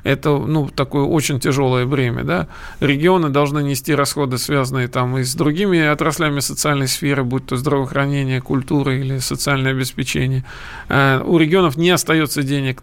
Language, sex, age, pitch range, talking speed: Russian, male, 40-59, 140-160 Hz, 145 wpm